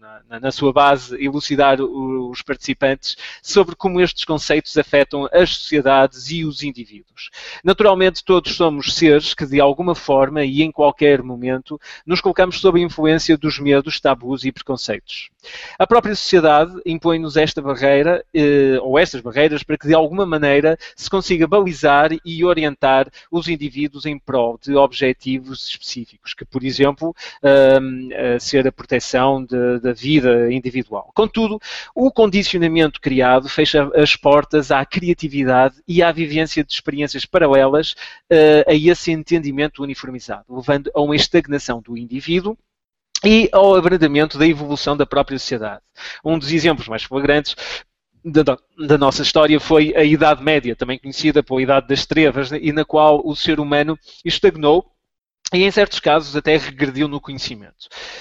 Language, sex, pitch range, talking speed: Portuguese, male, 135-165 Hz, 145 wpm